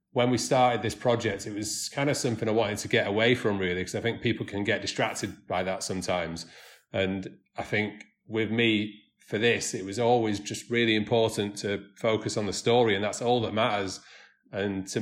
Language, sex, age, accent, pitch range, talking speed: English, male, 30-49, British, 105-120 Hz, 210 wpm